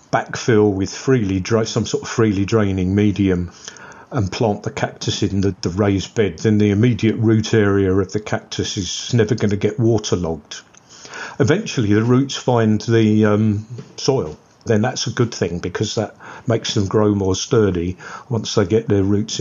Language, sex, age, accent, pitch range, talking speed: English, male, 40-59, British, 95-110 Hz, 175 wpm